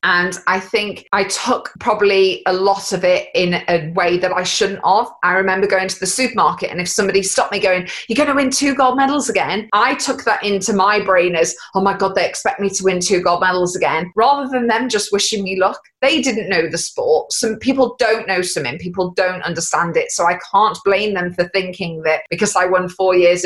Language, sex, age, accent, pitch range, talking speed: English, female, 20-39, British, 175-205 Hz, 230 wpm